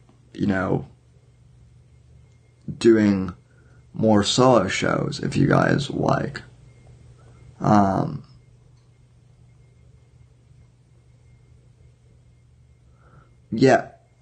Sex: male